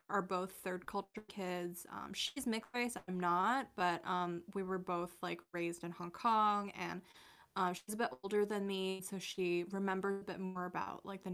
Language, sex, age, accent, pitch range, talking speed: English, female, 10-29, American, 180-210 Hz, 200 wpm